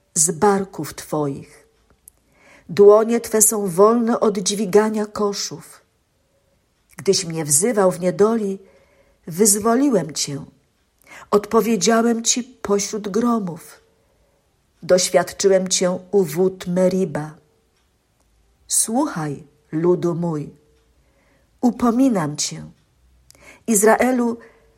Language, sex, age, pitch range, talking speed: Polish, female, 50-69, 165-215 Hz, 75 wpm